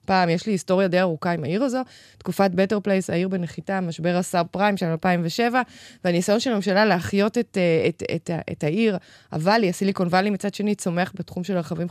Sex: female